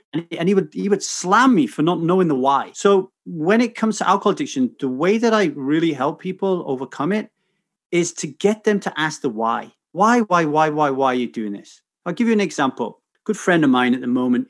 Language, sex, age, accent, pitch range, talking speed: English, male, 30-49, British, 145-195 Hz, 230 wpm